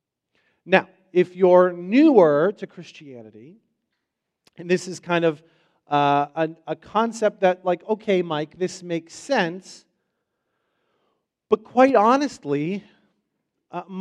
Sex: male